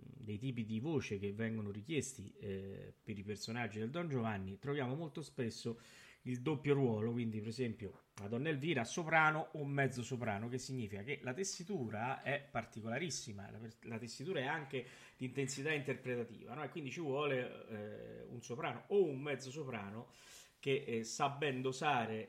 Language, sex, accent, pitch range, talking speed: Italian, male, native, 110-140 Hz, 160 wpm